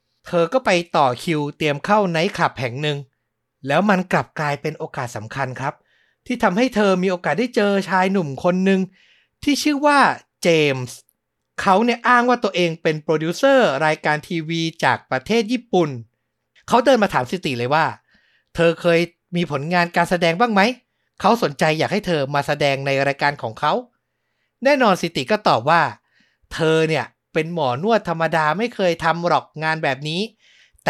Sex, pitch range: male, 140-195 Hz